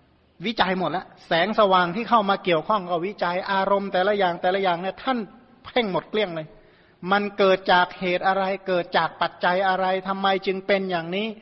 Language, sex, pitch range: Thai, male, 175-210 Hz